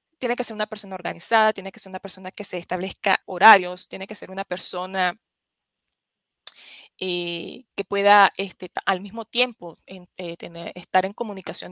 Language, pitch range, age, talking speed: Spanish, 185-230 Hz, 20-39, 155 wpm